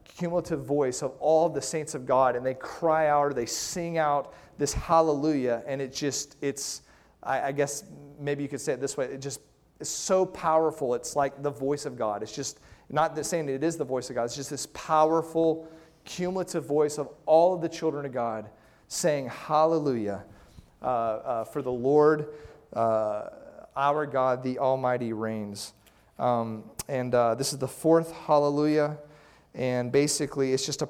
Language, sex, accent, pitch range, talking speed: English, male, American, 120-145 Hz, 180 wpm